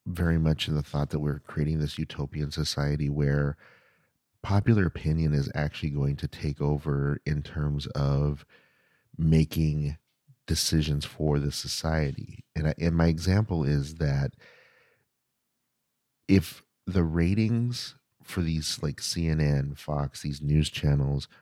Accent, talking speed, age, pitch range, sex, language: American, 125 wpm, 40-59, 75-90 Hz, male, English